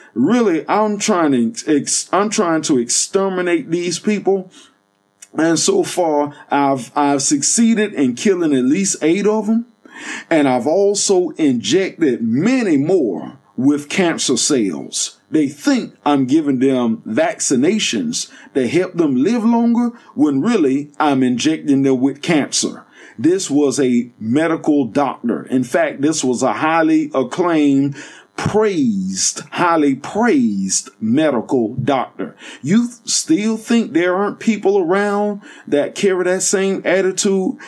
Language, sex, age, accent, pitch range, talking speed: English, male, 50-69, American, 155-230 Hz, 125 wpm